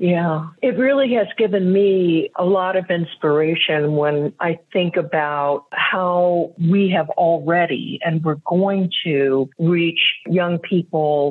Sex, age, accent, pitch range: female, 50-69, American, 155-195 Hz